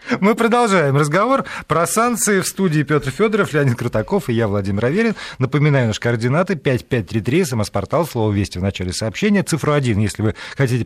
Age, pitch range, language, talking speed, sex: 40-59, 110-170 Hz, Russian, 165 wpm, male